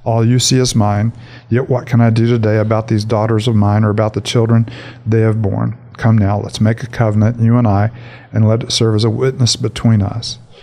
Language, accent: English, American